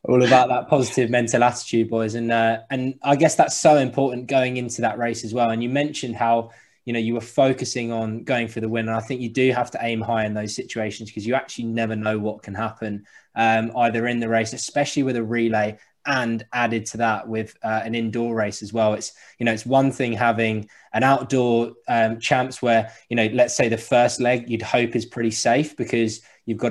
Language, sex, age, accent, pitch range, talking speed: English, male, 20-39, British, 110-125 Hz, 230 wpm